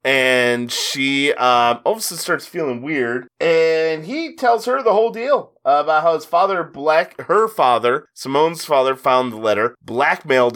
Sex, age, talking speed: male, 30-49, 165 wpm